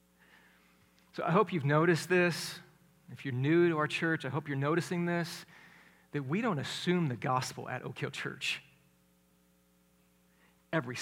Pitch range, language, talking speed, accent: 130-180 Hz, English, 150 wpm, American